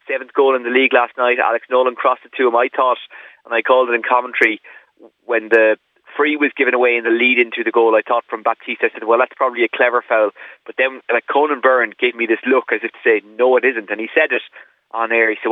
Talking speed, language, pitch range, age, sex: 265 wpm, English, 115-130 Hz, 30-49, male